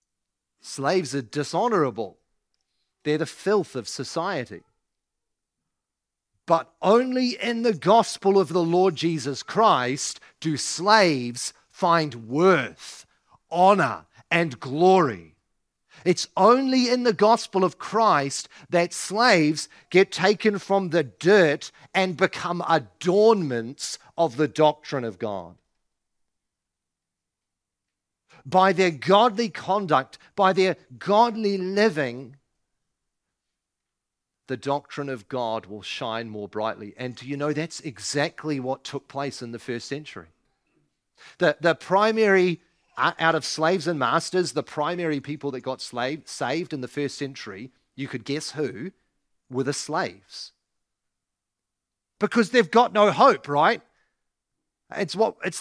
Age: 40-59